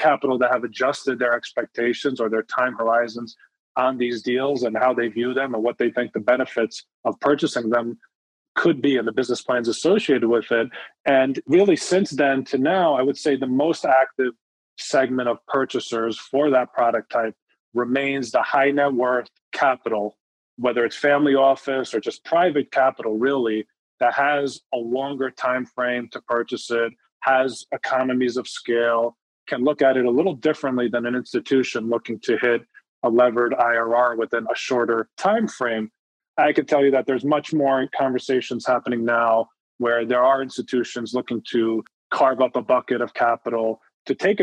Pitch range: 120-140 Hz